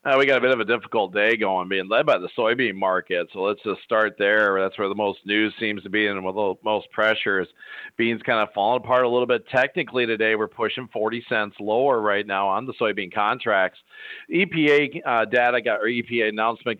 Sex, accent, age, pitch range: male, American, 40-59, 110-135 Hz